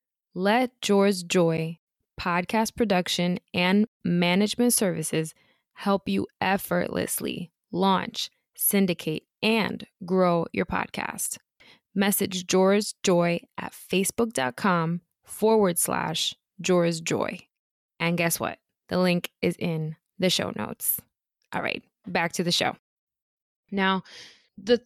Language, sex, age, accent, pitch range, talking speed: English, female, 20-39, American, 175-220 Hz, 105 wpm